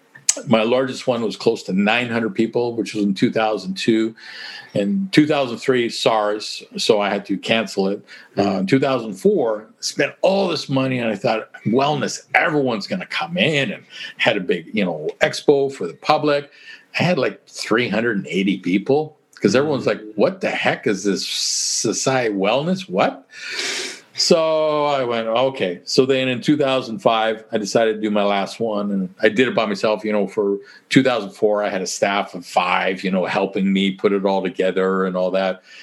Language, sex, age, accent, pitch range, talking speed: English, male, 50-69, American, 105-135 Hz, 180 wpm